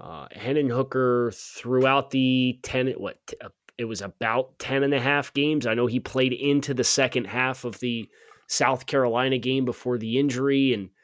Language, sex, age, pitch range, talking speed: English, male, 20-39, 115-130 Hz, 185 wpm